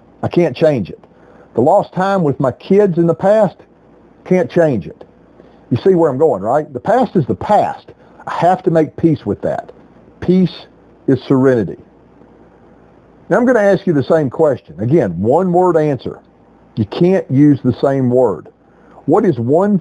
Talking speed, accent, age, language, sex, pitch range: 180 wpm, American, 50-69, English, male, 130-180 Hz